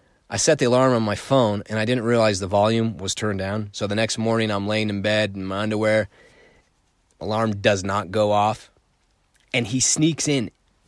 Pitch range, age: 105-135 Hz, 30-49